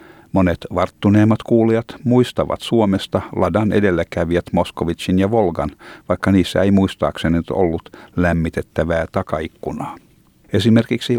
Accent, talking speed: native, 95 wpm